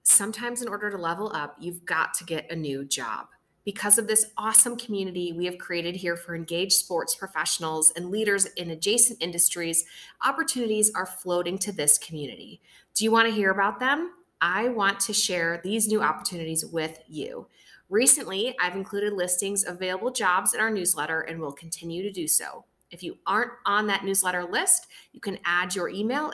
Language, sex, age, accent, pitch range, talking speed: English, female, 30-49, American, 170-215 Hz, 185 wpm